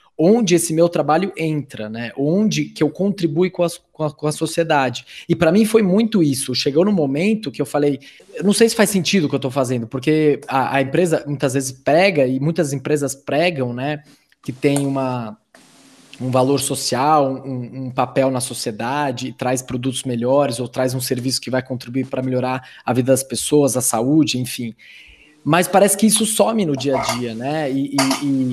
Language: Portuguese